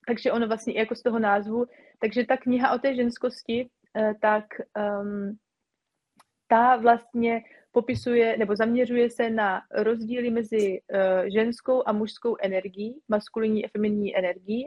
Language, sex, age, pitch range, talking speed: Slovak, female, 30-49, 200-235 Hz, 125 wpm